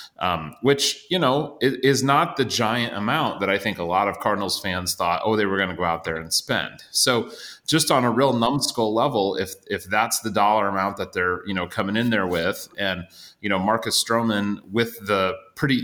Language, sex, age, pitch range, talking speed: English, male, 30-49, 95-125 Hz, 215 wpm